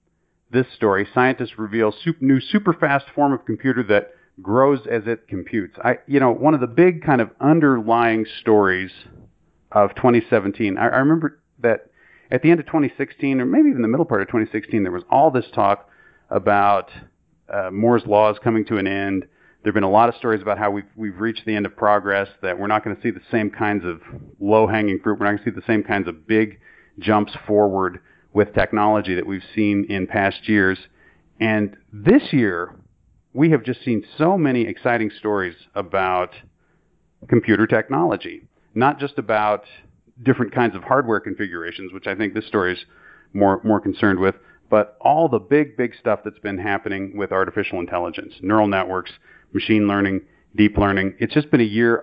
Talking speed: 185 wpm